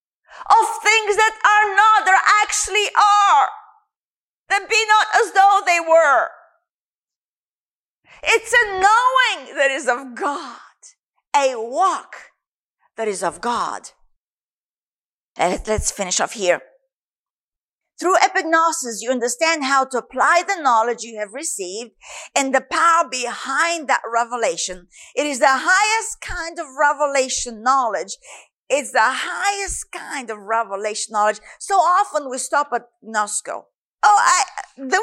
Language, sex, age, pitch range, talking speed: English, female, 50-69, 270-420 Hz, 130 wpm